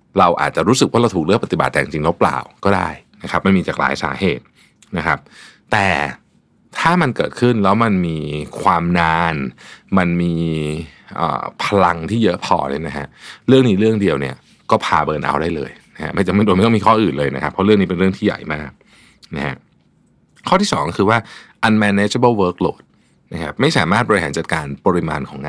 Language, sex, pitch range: Thai, male, 80-115 Hz